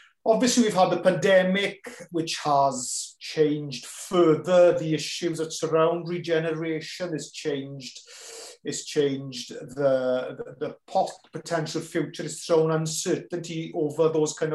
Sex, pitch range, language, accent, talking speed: male, 155-185 Hz, English, British, 120 wpm